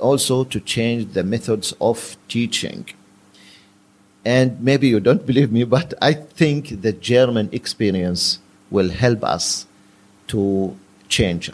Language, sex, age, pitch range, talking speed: English, male, 50-69, 100-135 Hz, 125 wpm